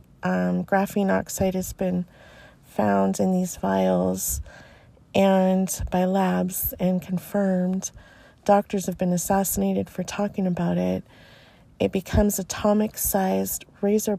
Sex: female